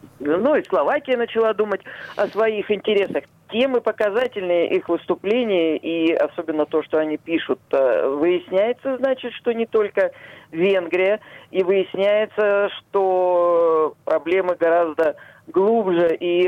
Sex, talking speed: male, 115 wpm